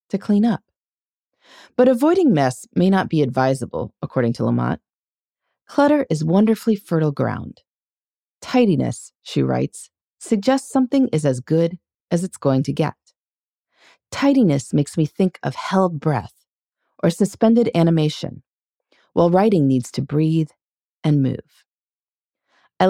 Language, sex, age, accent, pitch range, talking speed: English, female, 40-59, American, 135-200 Hz, 130 wpm